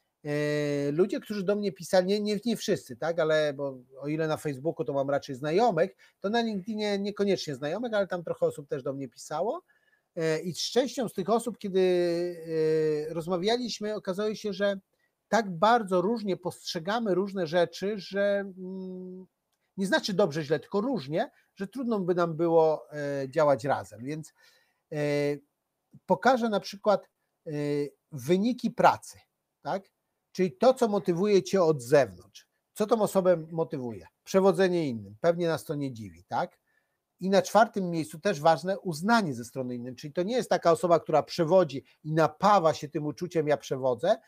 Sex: male